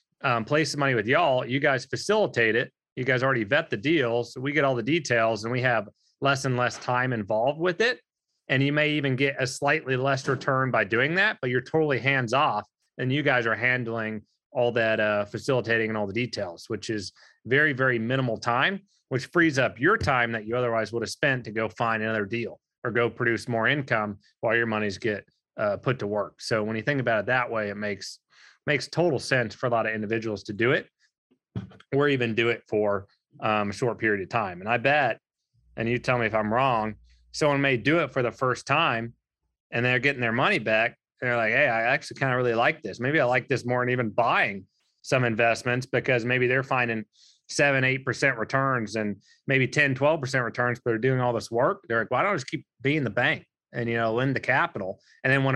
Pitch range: 115-135 Hz